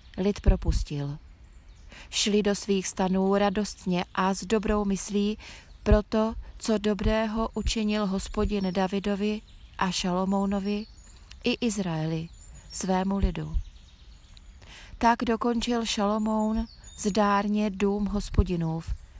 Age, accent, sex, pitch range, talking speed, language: 30-49, native, female, 170-215 Hz, 90 wpm, Czech